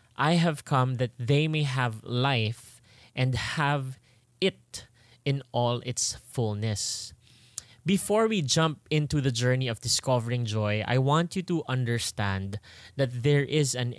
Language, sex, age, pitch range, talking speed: English, male, 20-39, 115-145 Hz, 140 wpm